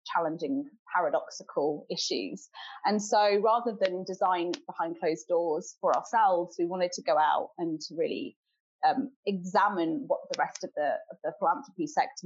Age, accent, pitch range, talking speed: 30-49, British, 180-270 Hz, 145 wpm